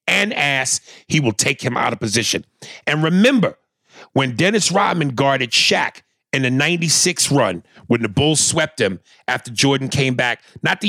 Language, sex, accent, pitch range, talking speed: English, male, American, 135-185 Hz, 170 wpm